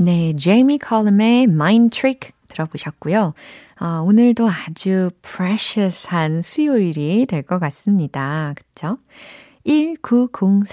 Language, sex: Korean, female